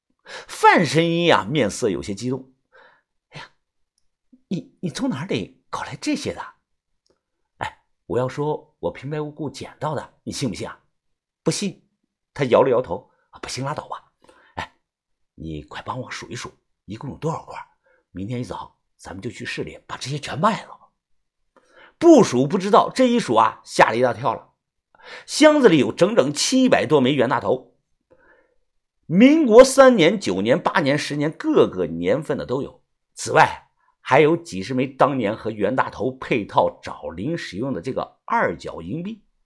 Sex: male